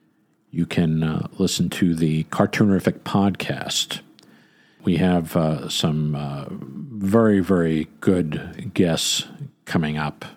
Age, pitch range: 50-69, 85-105 Hz